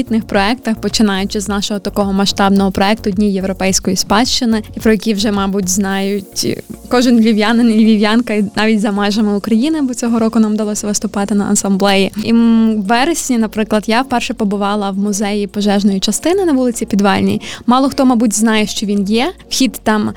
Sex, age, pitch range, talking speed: female, 20-39, 210-235 Hz, 165 wpm